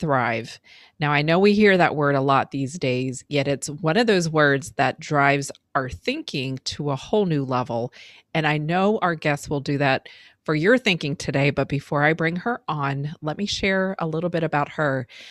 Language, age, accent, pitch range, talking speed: English, 30-49, American, 140-175 Hz, 210 wpm